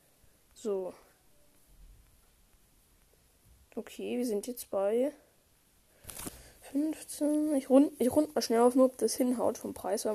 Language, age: German, 10-29